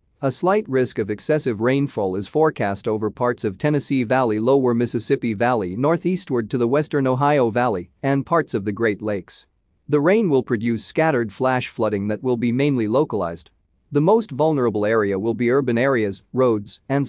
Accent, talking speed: American, 175 wpm